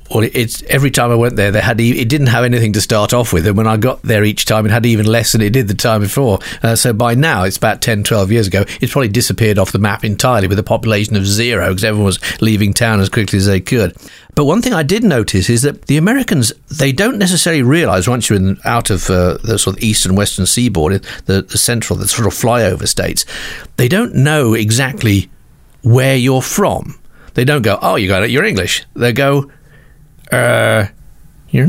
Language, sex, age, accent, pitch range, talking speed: English, male, 50-69, British, 100-135 Hz, 230 wpm